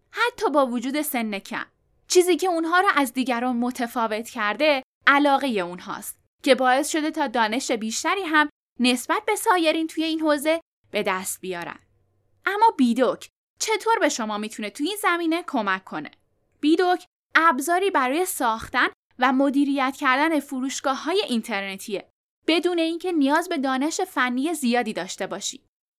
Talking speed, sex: 140 wpm, female